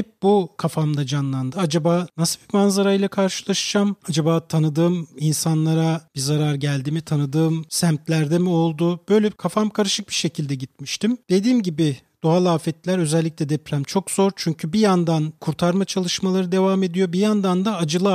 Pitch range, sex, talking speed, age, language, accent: 160-200 Hz, male, 150 wpm, 40-59, Turkish, native